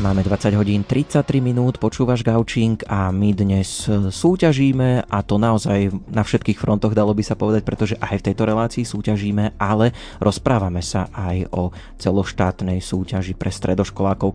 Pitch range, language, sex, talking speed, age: 95-110 Hz, Slovak, male, 150 wpm, 30-49